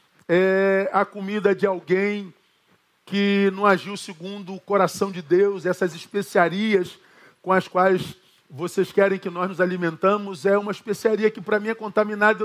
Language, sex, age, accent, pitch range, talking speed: Portuguese, male, 40-59, Brazilian, 180-215 Hz, 150 wpm